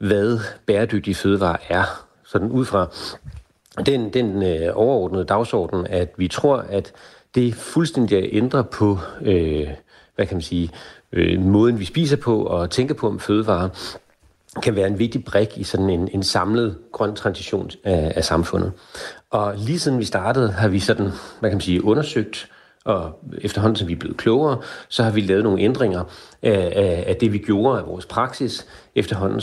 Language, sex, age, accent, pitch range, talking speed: Danish, male, 40-59, native, 95-115 Hz, 175 wpm